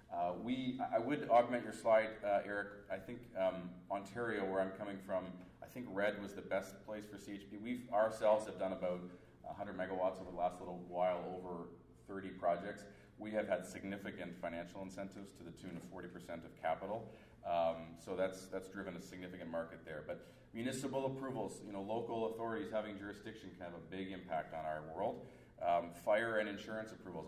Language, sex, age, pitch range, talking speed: English, male, 30-49, 90-110 Hz, 185 wpm